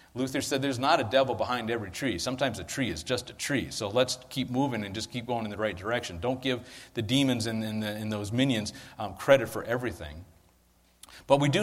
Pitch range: 110-140 Hz